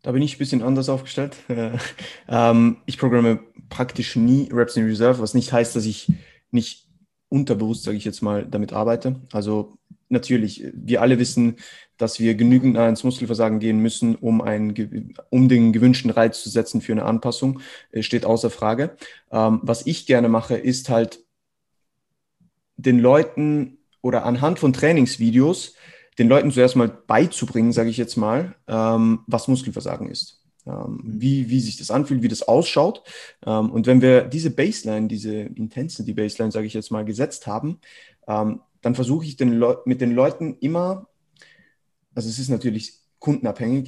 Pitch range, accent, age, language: 115-130 Hz, German, 20-39, German